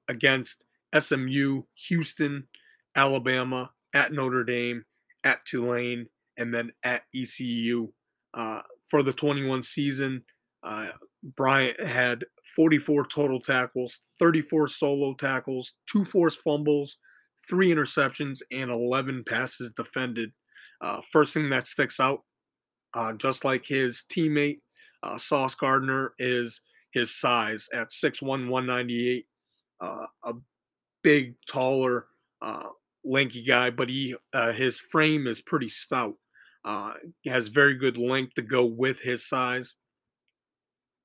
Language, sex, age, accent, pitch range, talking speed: English, male, 30-49, American, 120-140 Hz, 120 wpm